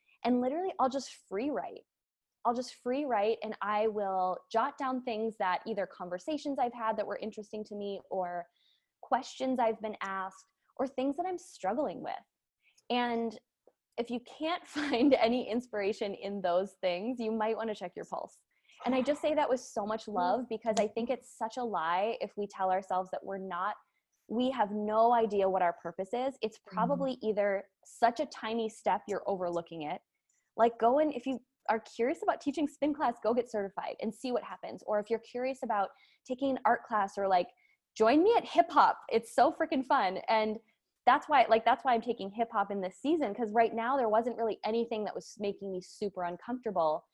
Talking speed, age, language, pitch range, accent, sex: 200 wpm, 20-39, English, 200-255 Hz, American, female